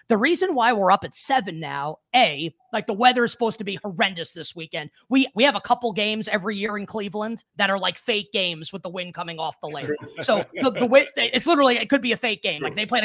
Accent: American